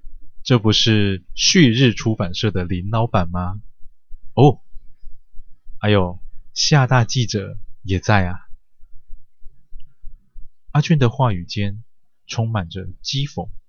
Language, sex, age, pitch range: Chinese, male, 20-39, 100-115 Hz